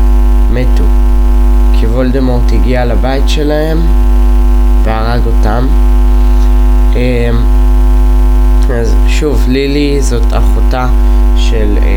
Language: Hebrew